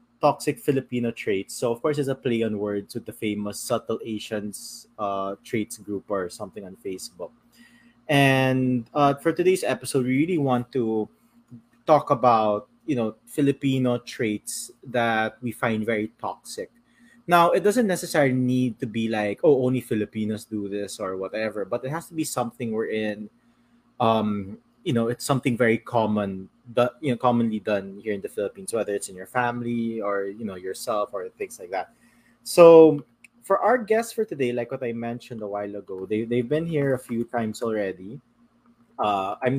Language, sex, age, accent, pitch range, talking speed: English, male, 20-39, Filipino, 110-145 Hz, 180 wpm